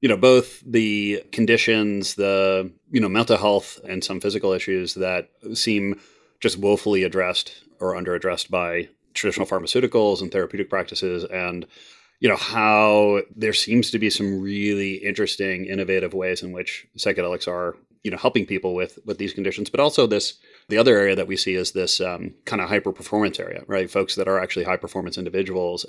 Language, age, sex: English, 30-49, male